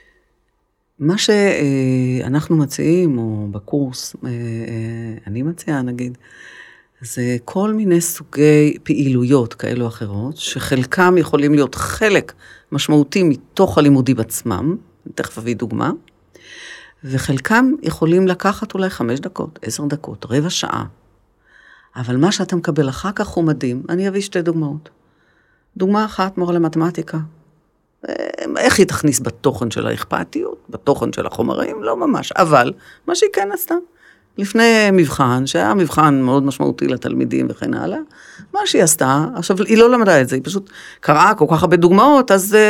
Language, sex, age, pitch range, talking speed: Hebrew, female, 40-59, 135-205 Hz, 135 wpm